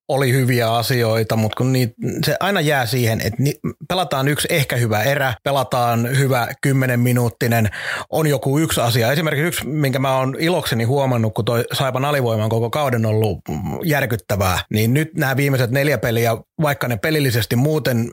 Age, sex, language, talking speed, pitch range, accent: 30-49, male, Finnish, 160 wpm, 115-140 Hz, native